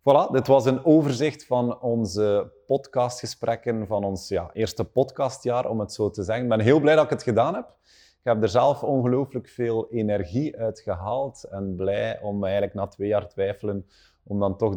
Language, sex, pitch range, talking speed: Dutch, male, 100-125 Hz, 185 wpm